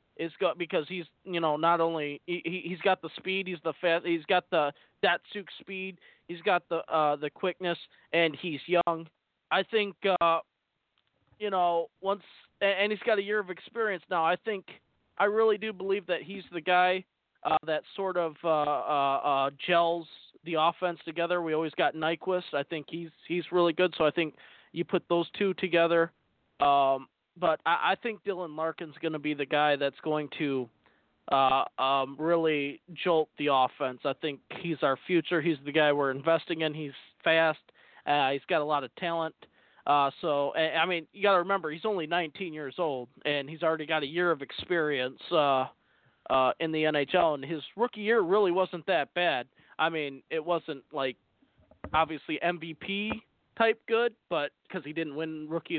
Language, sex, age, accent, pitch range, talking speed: English, male, 20-39, American, 150-180 Hz, 185 wpm